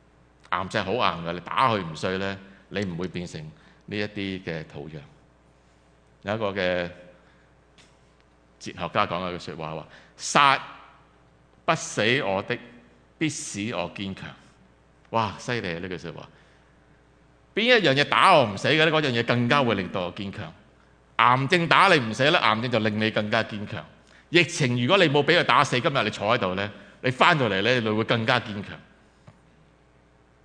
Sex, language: male, English